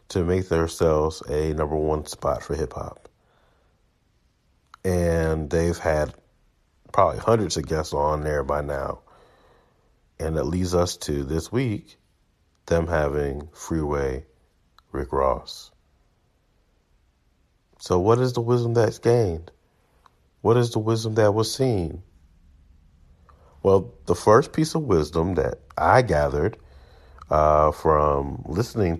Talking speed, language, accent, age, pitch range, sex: 120 wpm, English, American, 40-59, 75-105 Hz, male